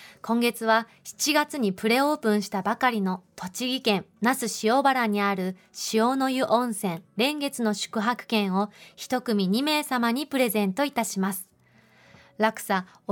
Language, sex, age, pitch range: Japanese, female, 20-39, 200-245 Hz